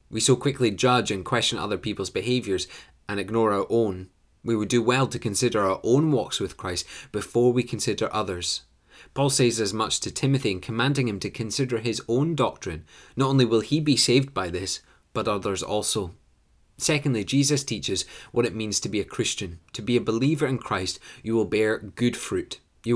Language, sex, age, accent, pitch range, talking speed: English, male, 20-39, British, 100-125 Hz, 195 wpm